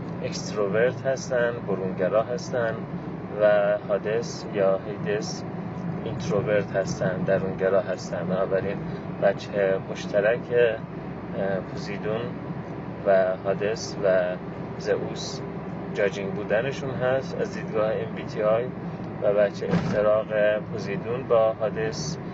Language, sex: Persian, male